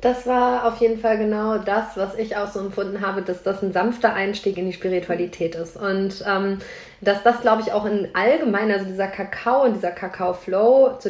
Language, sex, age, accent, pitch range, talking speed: German, female, 20-39, German, 200-240 Hz, 205 wpm